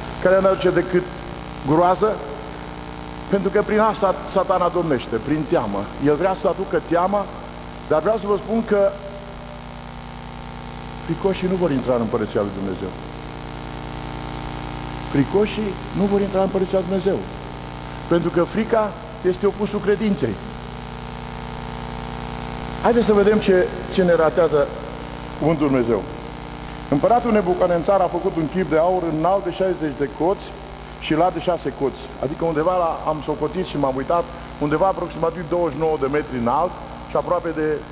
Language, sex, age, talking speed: Romanian, male, 50-69, 140 wpm